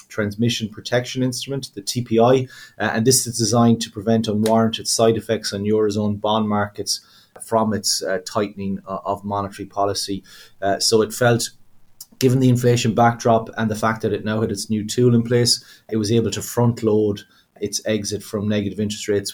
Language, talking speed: English, 170 wpm